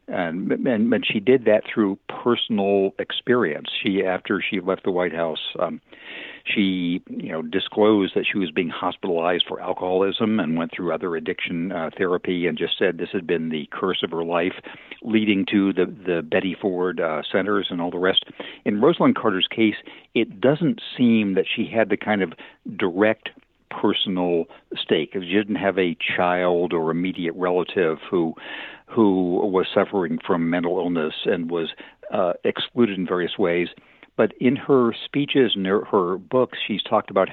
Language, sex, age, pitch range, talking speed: English, male, 60-79, 90-110 Hz, 170 wpm